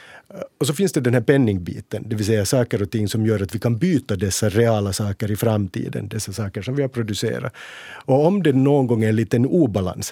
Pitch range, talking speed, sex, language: 105-130 Hz, 230 wpm, male, Swedish